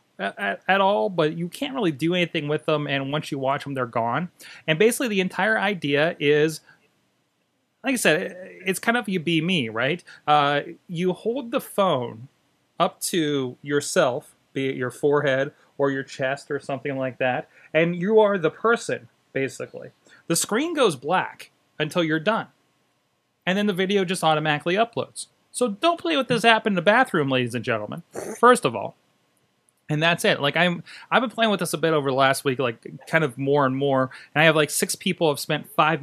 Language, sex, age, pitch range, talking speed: English, male, 30-49, 140-190 Hz, 200 wpm